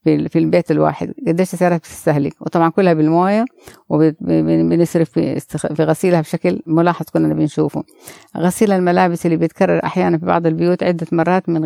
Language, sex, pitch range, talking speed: Arabic, female, 160-180 Hz, 140 wpm